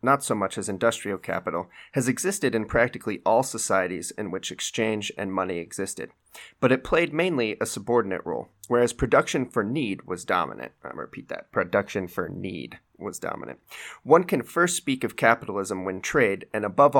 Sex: male